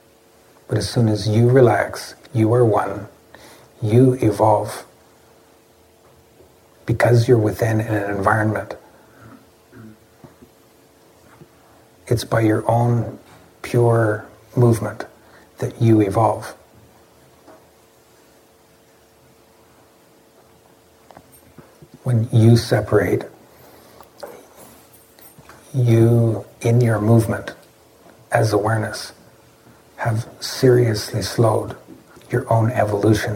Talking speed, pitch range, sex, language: 70 wpm, 95-115 Hz, male, English